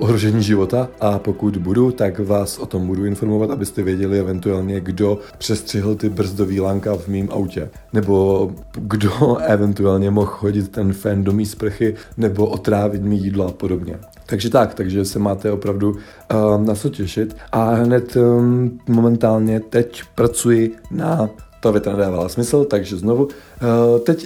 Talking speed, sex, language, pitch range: 155 wpm, male, Czech, 100-115 Hz